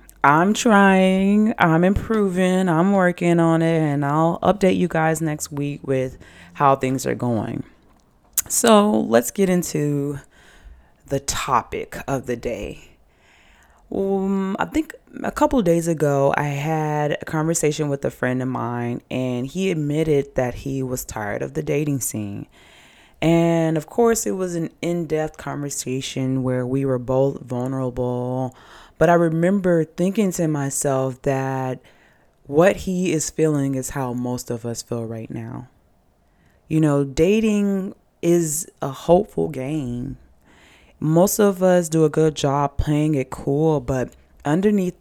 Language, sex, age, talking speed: English, female, 20-39, 145 wpm